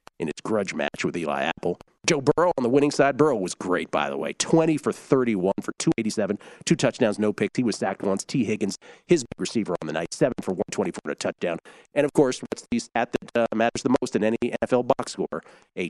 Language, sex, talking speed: English, male, 240 wpm